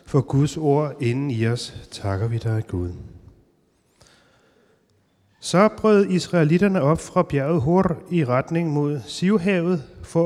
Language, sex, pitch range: Danish, male, 115-165 Hz